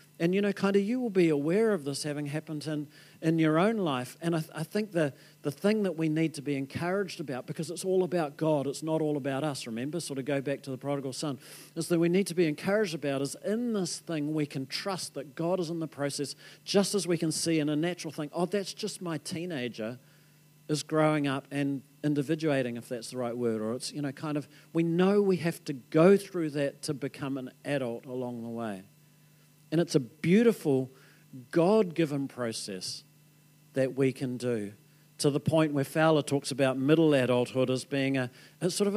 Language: English